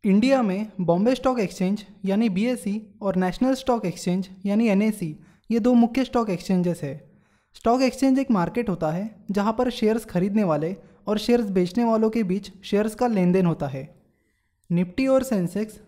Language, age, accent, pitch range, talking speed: Hindi, 20-39, native, 180-235 Hz, 170 wpm